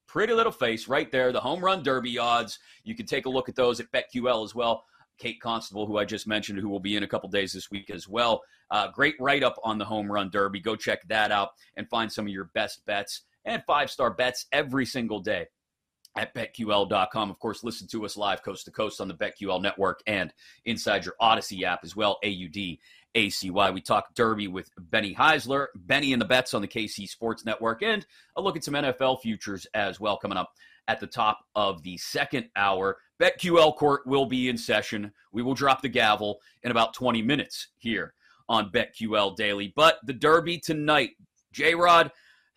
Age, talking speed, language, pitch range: 30-49, 200 wpm, English, 105-145 Hz